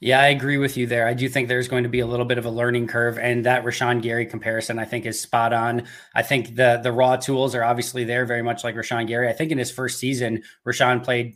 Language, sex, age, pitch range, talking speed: English, male, 20-39, 120-130 Hz, 275 wpm